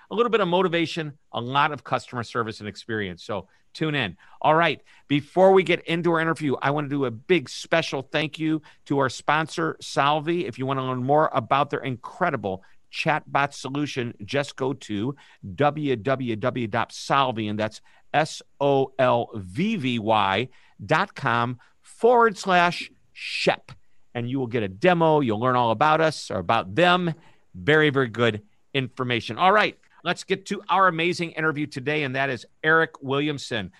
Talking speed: 170 wpm